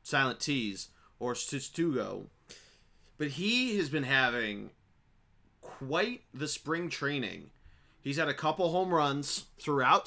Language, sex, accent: English, male, American